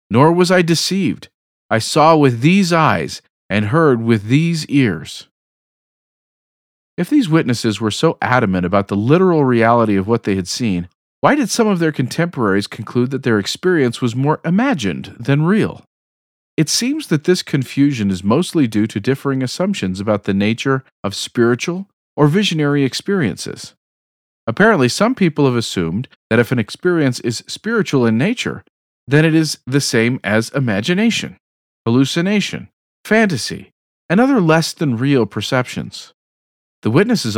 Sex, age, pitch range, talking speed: male, 40-59, 110-165 Hz, 145 wpm